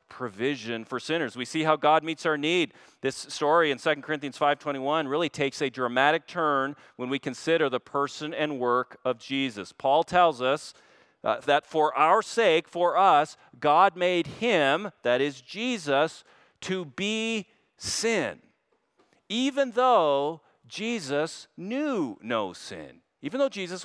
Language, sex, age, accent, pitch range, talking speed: English, male, 40-59, American, 140-215 Hz, 145 wpm